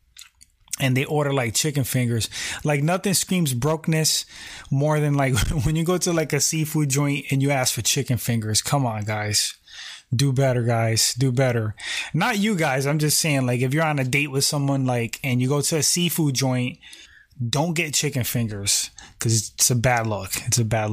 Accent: American